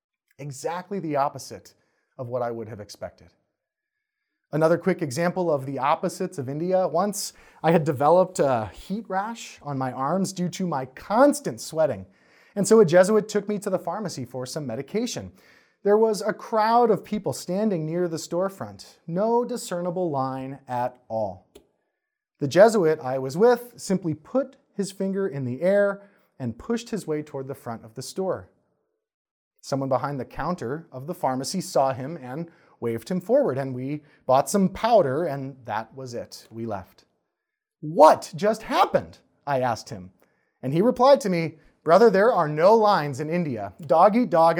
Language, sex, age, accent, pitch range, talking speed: English, male, 30-49, American, 130-200 Hz, 170 wpm